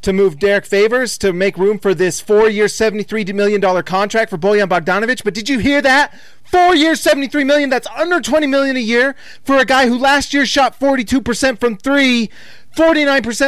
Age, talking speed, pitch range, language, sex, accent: 30-49, 180 wpm, 200-265 Hz, English, male, American